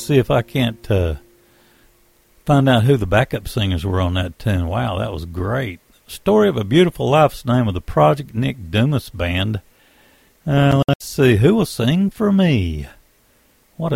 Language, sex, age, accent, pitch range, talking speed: English, male, 50-69, American, 100-145 Hz, 170 wpm